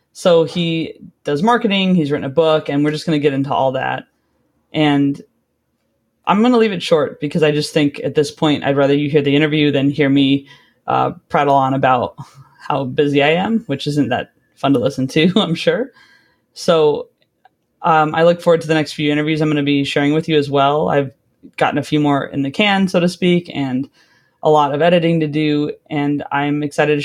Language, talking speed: English, 210 wpm